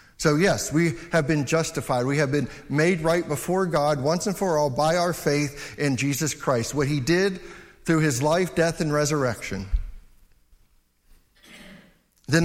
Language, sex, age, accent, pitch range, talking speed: English, male, 50-69, American, 125-190 Hz, 160 wpm